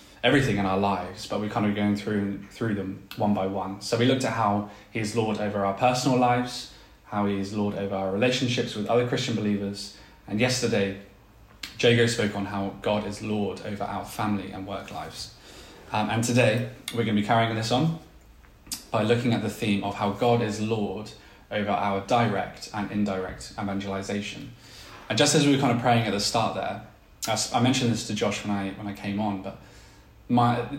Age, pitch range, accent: 20-39, 100-115 Hz, British